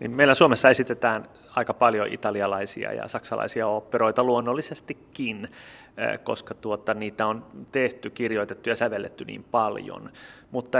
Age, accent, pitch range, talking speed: 30-49, native, 105-140 Hz, 115 wpm